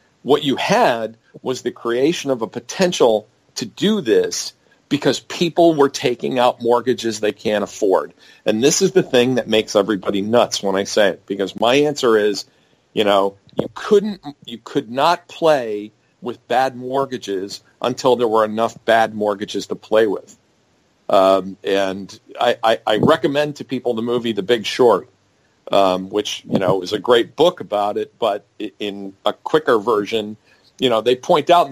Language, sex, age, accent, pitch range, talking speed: English, male, 50-69, American, 110-150 Hz, 175 wpm